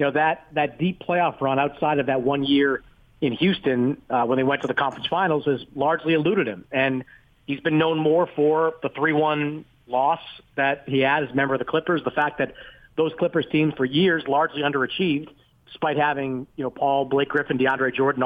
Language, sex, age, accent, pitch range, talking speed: English, male, 40-59, American, 140-175 Hz, 205 wpm